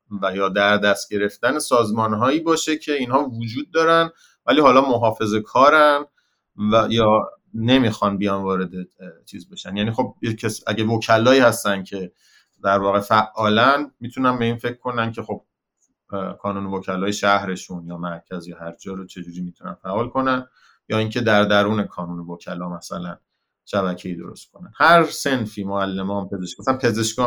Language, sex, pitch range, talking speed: Persian, male, 95-120 Hz, 145 wpm